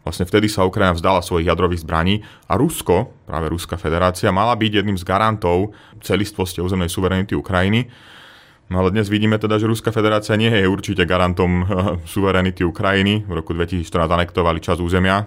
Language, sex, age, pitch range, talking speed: Slovak, male, 30-49, 90-110 Hz, 165 wpm